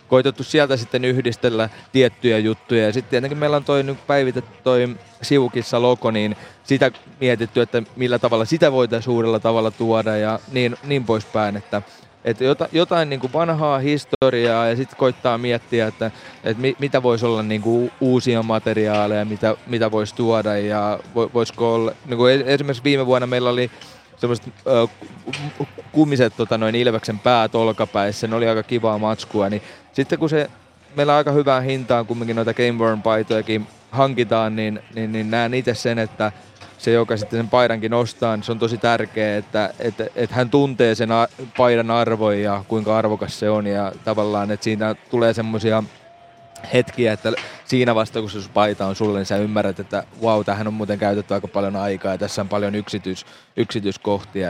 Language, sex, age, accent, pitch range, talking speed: Finnish, male, 30-49, native, 105-125 Hz, 170 wpm